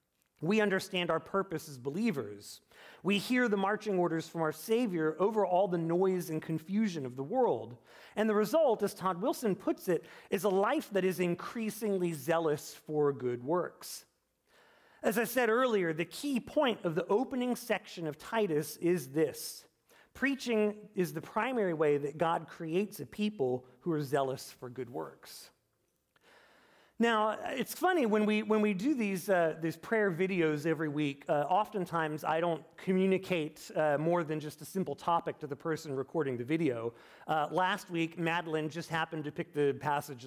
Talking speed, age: 170 wpm, 40-59